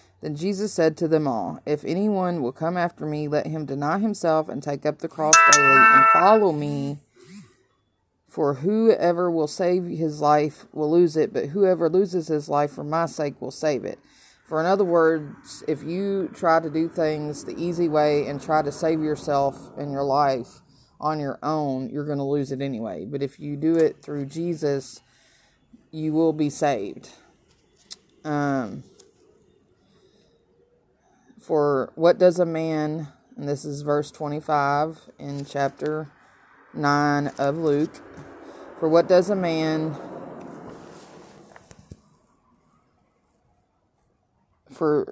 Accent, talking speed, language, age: American, 145 wpm, English, 30-49